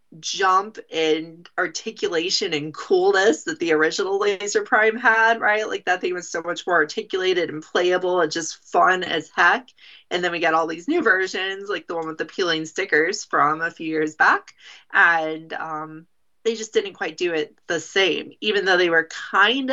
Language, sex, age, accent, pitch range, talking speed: English, female, 30-49, American, 170-270 Hz, 190 wpm